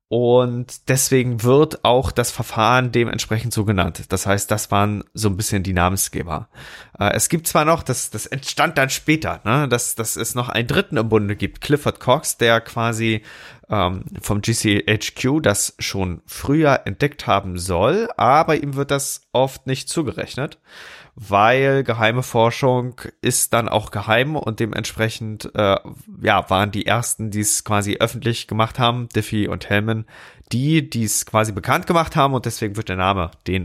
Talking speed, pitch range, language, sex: 165 wpm, 105-130 Hz, German, male